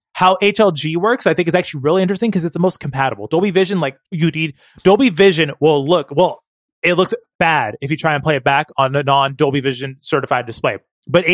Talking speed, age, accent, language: 215 wpm, 20-39, American, English